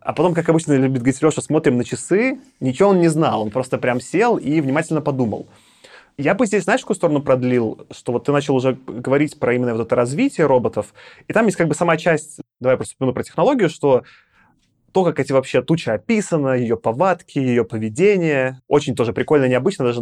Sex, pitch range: male, 120-160 Hz